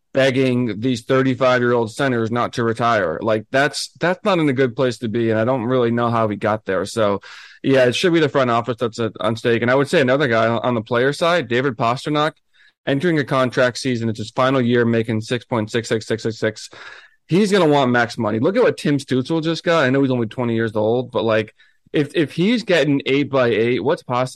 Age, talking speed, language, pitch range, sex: 20-39, 220 wpm, English, 110-135 Hz, male